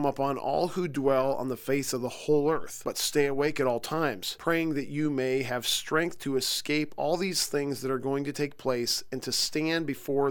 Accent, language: American, English